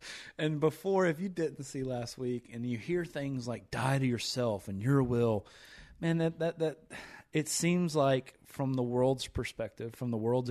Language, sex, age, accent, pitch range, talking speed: English, male, 30-49, American, 125-150 Hz, 190 wpm